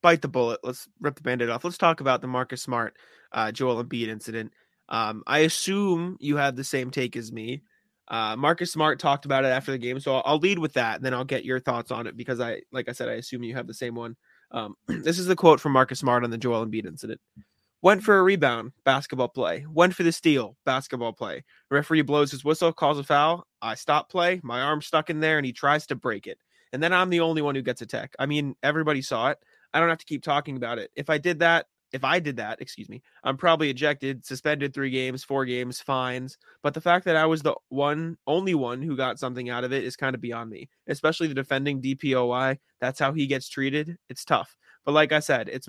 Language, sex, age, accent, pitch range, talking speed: English, male, 20-39, American, 125-155 Hz, 245 wpm